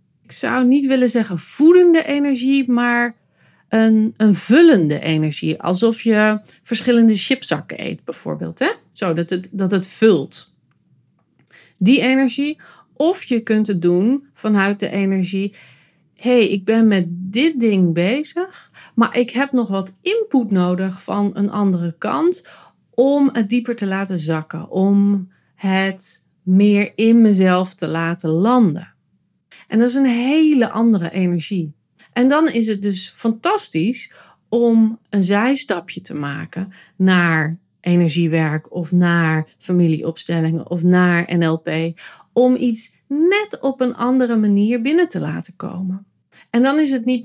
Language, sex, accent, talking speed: Dutch, female, Dutch, 140 wpm